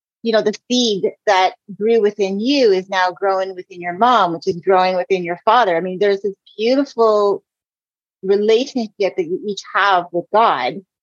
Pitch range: 180-220 Hz